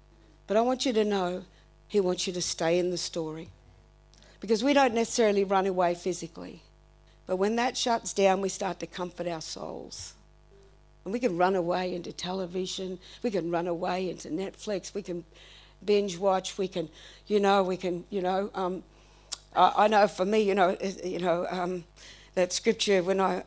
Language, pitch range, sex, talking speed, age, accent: English, 180-275 Hz, female, 185 wpm, 60-79, Australian